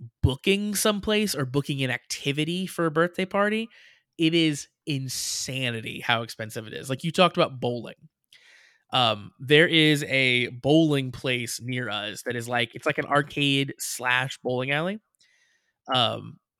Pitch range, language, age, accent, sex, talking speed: 125-165 Hz, English, 20-39, American, male, 150 wpm